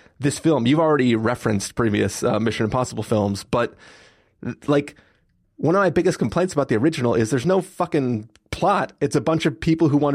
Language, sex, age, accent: English, male, 30-49, American